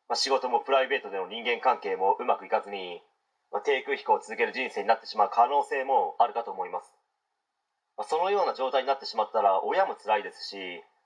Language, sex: Japanese, male